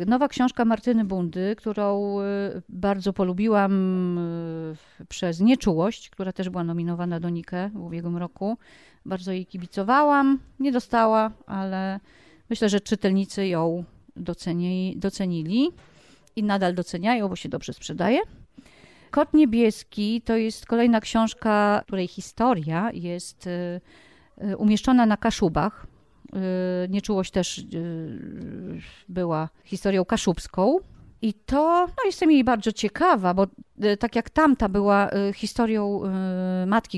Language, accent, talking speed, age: Polish, native, 105 wpm, 40-59